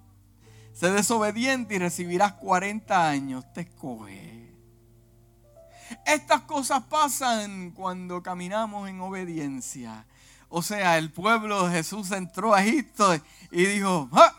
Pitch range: 140-200 Hz